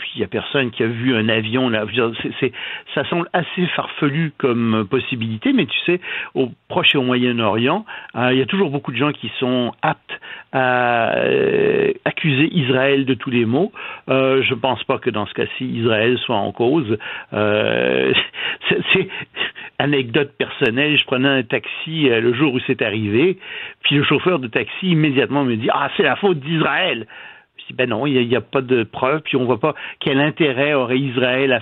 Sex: male